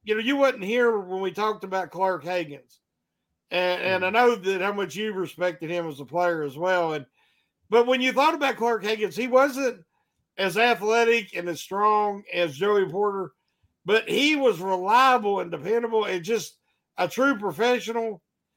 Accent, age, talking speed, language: American, 50-69, 180 wpm, English